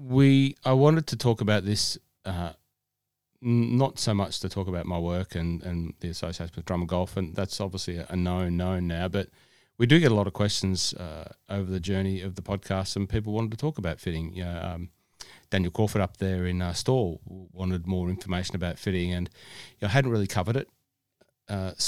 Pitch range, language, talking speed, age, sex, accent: 90-110 Hz, English, 215 wpm, 30-49, male, Australian